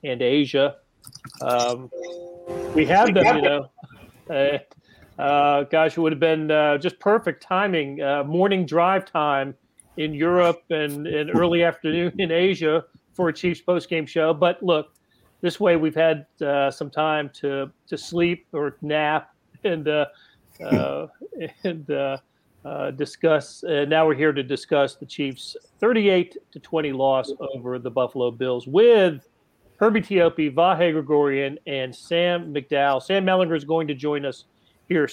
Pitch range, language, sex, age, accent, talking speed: 140-170 Hz, English, male, 40-59, American, 150 wpm